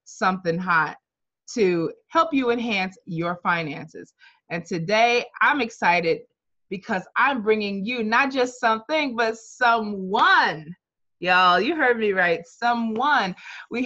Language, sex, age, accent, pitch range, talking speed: English, female, 20-39, American, 175-245 Hz, 120 wpm